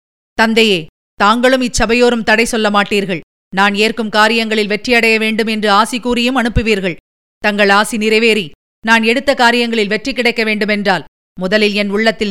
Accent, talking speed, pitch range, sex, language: native, 130 wpm, 205-235 Hz, female, Tamil